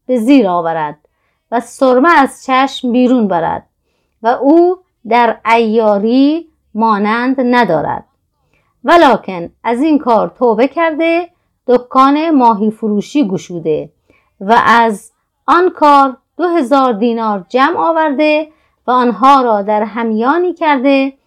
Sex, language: female, Persian